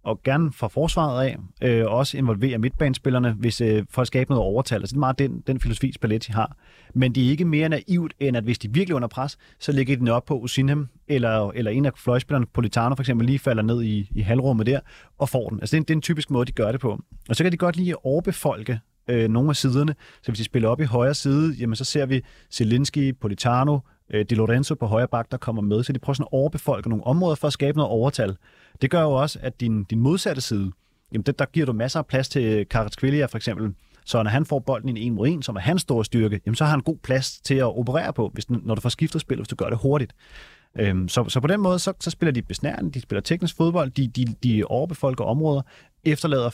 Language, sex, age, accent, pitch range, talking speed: Danish, male, 30-49, native, 110-140 Hz, 255 wpm